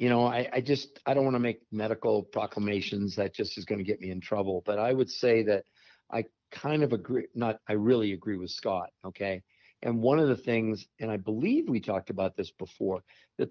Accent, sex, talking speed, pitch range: American, male, 225 wpm, 105-125 Hz